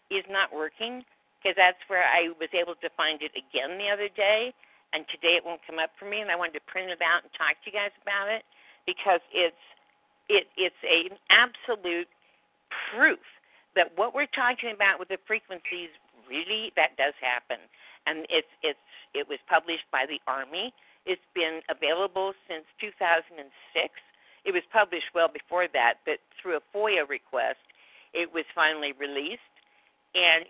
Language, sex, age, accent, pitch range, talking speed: English, female, 50-69, American, 170-220 Hz, 170 wpm